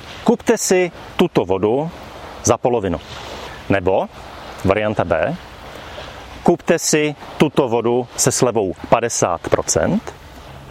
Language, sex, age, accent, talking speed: Czech, male, 40-59, native, 90 wpm